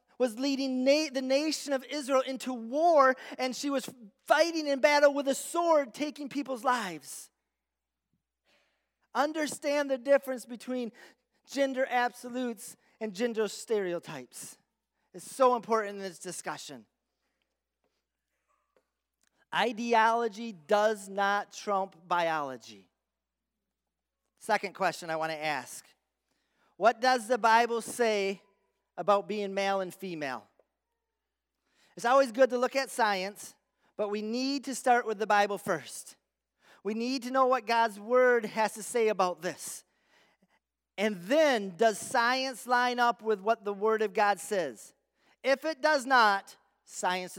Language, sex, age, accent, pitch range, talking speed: English, male, 30-49, American, 175-255 Hz, 130 wpm